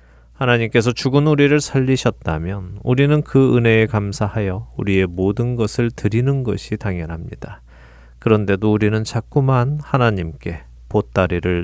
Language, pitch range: Korean, 85-120 Hz